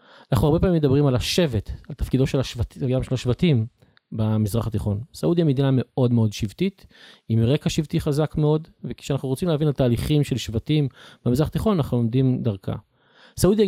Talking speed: 170 wpm